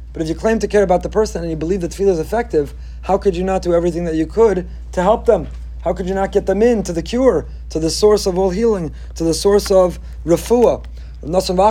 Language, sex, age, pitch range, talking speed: English, male, 40-59, 145-190 Hz, 250 wpm